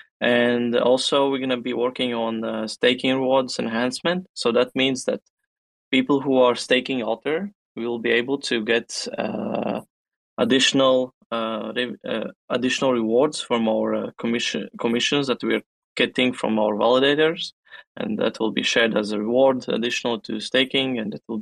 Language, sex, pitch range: English, male, 115-130 Hz